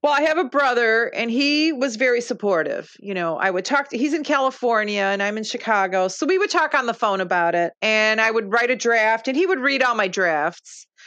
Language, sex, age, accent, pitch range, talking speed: English, female, 40-59, American, 215-290 Hz, 245 wpm